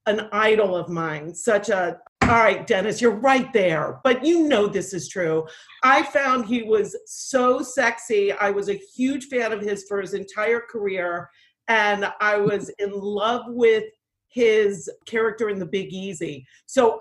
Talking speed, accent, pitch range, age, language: 170 wpm, American, 195-240 Hz, 40-59, English